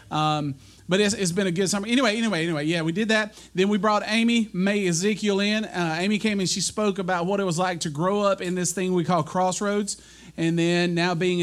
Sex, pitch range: male, 160-195 Hz